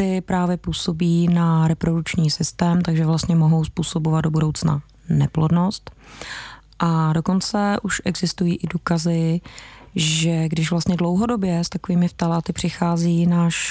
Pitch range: 160-180 Hz